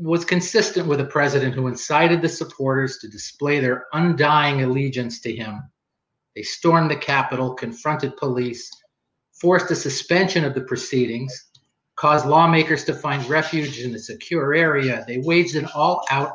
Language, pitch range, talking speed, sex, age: English, 130-170 Hz, 150 wpm, male, 40-59